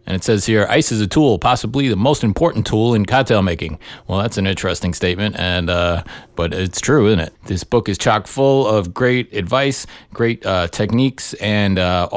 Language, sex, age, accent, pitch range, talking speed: English, male, 30-49, American, 90-120 Hz, 200 wpm